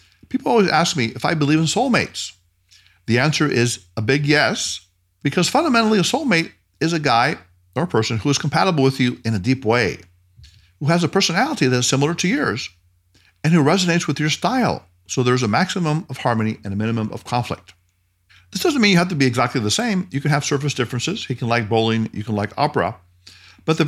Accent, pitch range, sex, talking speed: American, 95-150 Hz, male, 215 wpm